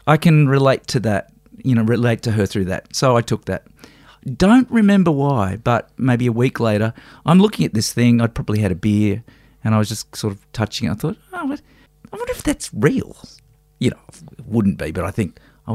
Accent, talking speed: Australian, 225 wpm